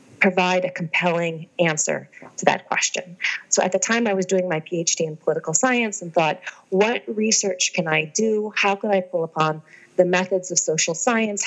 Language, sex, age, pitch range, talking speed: English, female, 30-49, 165-195 Hz, 190 wpm